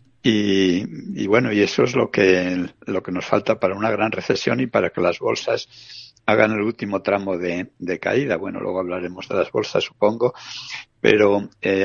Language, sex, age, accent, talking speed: Spanish, male, 60-79, Spanish, 185 wpm